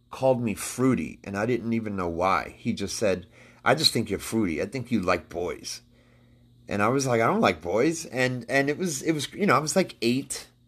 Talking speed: 235 wpm